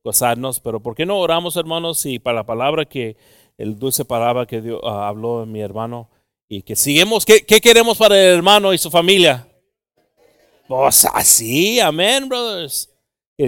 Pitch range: 125-155 Hz